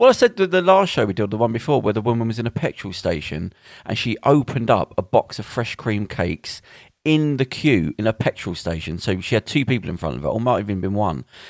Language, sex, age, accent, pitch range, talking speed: English, male, 40-59, British, 105-150 Hz, 265 wpm